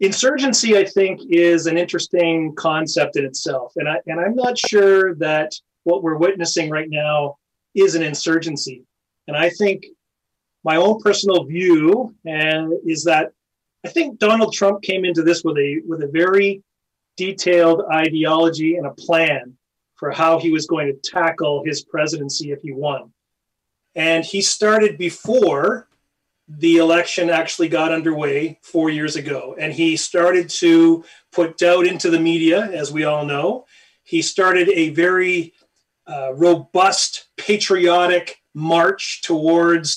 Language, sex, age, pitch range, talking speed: English, male, 30-49, 160-185 Hz, 145 wpm